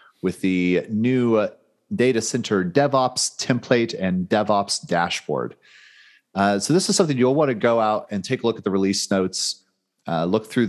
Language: English